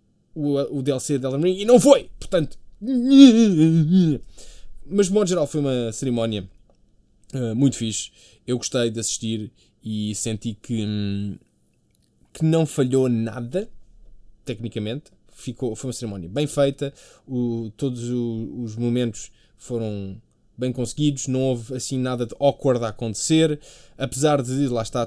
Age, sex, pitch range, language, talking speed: 20-39, male, 115-155 Hz, Portuguese, 140 wpm